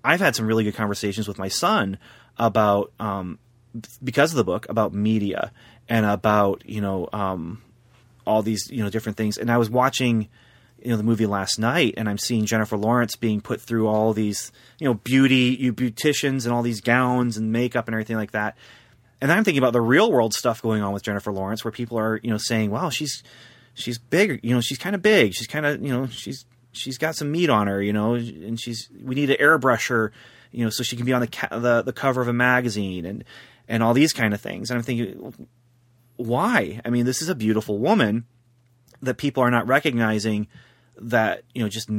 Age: 30-49